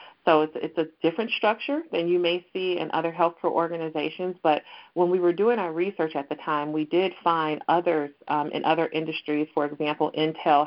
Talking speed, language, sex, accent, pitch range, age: 190 wpm, English, female, American, 155-180 Hz, 40-59